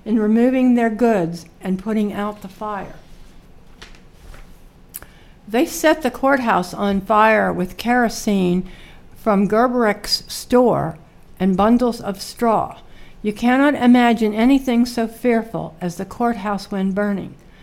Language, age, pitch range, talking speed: English, 60-79, 190-235 Hz, 120 wpm